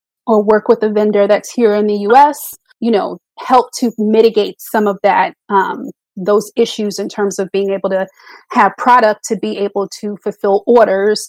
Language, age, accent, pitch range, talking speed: English, 30-49, American, 200-230 Hz, 185 wpm